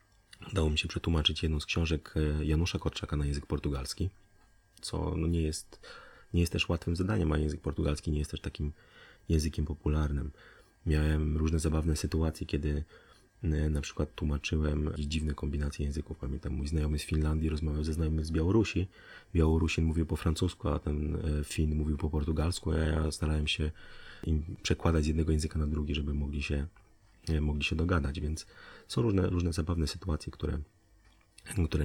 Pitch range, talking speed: 75-85 Hz, 160 wpm